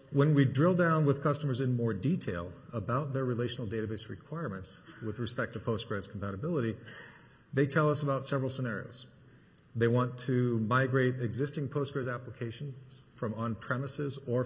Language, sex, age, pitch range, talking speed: English, male, 40-59, 115-140 Hz, 145 wpm